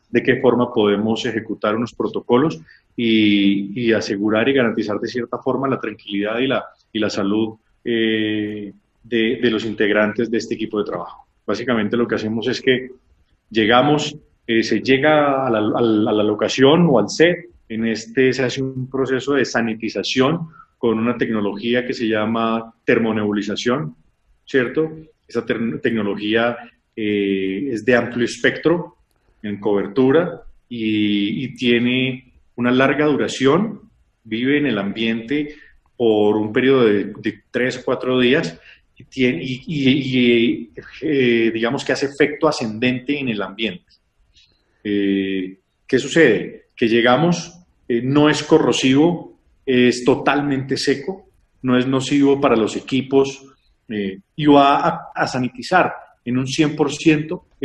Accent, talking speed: Colombian, 145 wpm